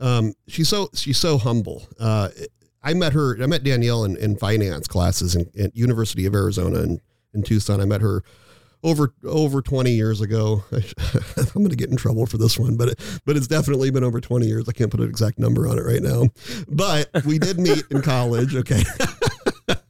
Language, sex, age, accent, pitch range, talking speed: English, male, 40-59, American, 105-135 Hz, 215 wpm